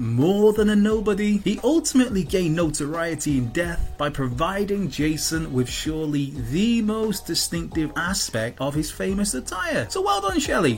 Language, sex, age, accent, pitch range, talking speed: English, male, 30-49, British, 135-210 Hz, 150 wpm